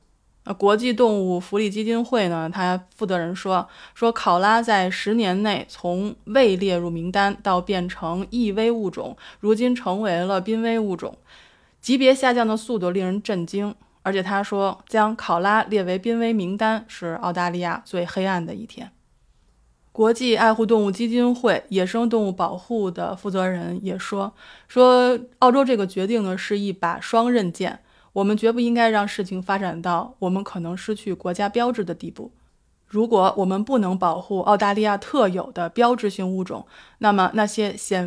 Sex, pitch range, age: female, 185-225 Hz, 20-39